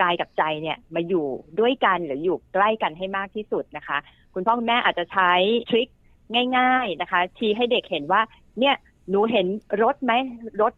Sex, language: female, Thai